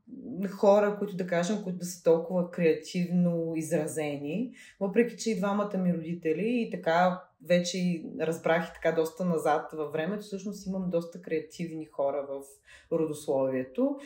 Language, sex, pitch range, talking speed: Bulgarian, female, 170-235 Hz, 140 wpm